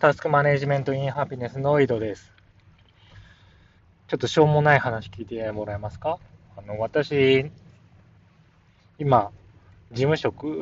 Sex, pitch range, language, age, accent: male, 95-135 Hz, Japanese, 20-39, native